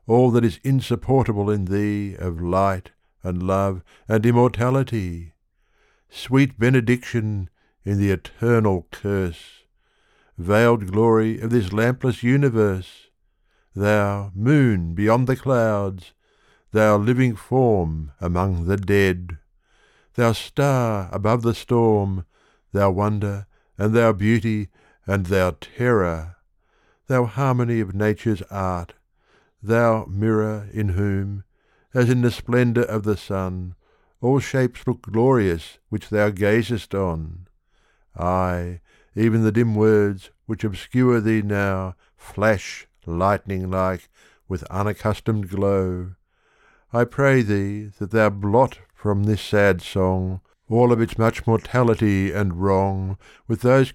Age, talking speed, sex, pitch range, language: 60-79, 115 wpm, male, 95-115 Hz, English